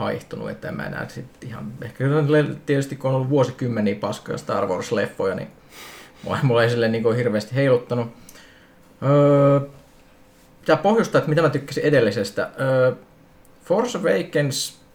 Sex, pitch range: male, 120-155 Hz